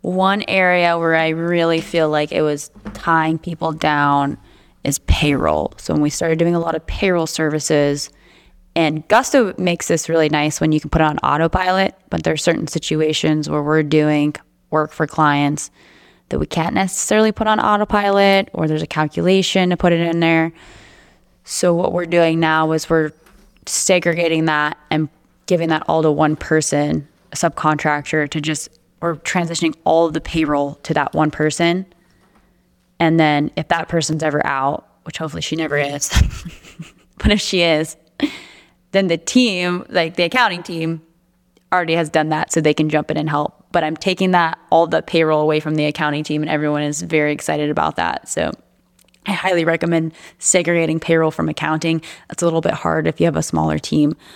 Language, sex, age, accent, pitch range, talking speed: English, female, 20-39, American, 150-175 Hz, 185 wpm